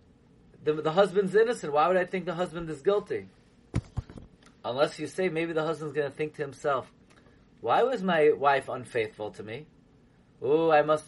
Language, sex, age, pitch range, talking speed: English, male, 30-49, 185-250 Hz, 180 wpm